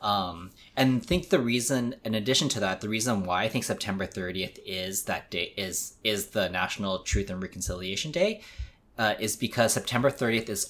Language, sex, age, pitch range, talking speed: English, male, 20-39, 95-120 Hz, 185 wpm